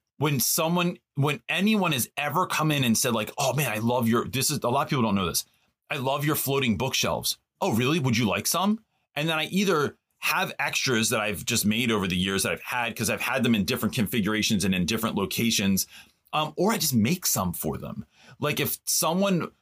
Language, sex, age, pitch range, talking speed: English, male, 30-49, 115-155 Hz, 225 wpm